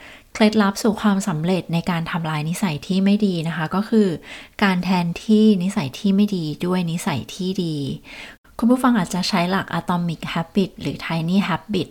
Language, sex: Thai, female